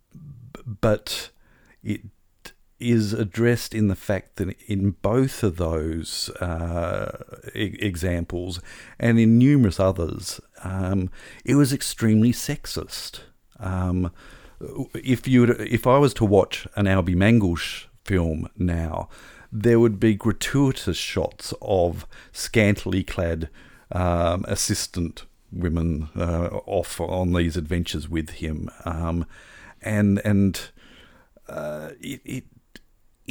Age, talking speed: 50-69, 110 wpm